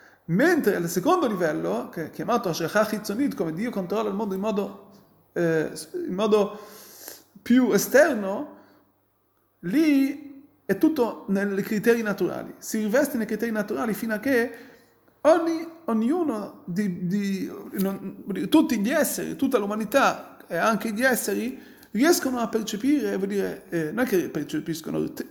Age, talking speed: 30-49, 140 wpm